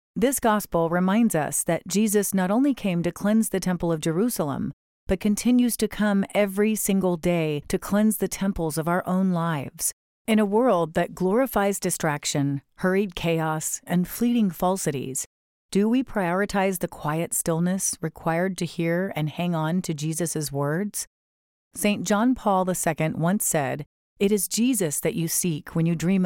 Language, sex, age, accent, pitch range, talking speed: English, female, 40-59, American, 160-200 Hz, 160 wpm